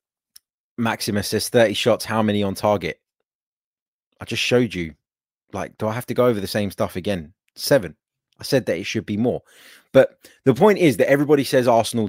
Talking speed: 195 wpm